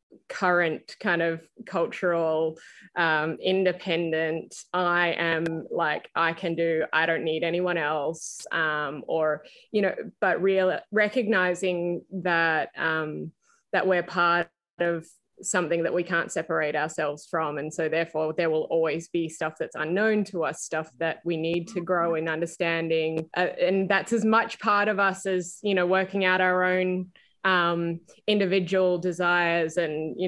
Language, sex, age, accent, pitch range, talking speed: English, female, 20-39, Australian, 160-180 Hz, 155 wpm